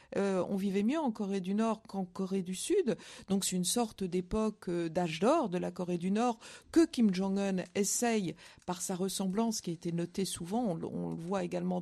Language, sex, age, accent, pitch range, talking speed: French, female, 50-69, French, 185-230 Hz, 215 wpm